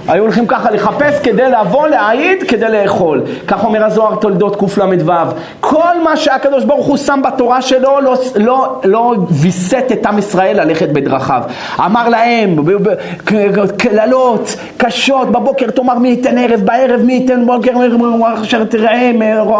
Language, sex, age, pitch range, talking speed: Hebrew, male, 40-59, 205-265 Hz, 150 wpm